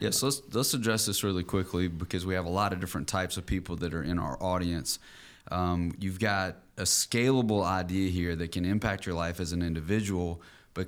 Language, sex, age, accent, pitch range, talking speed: English, male, 30-49, American, 85-95 Hz, 215 wpm